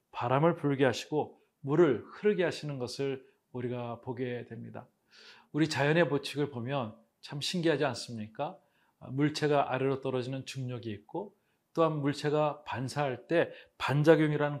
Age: 40-59